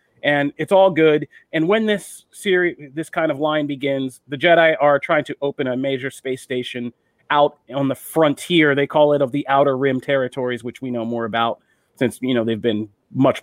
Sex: male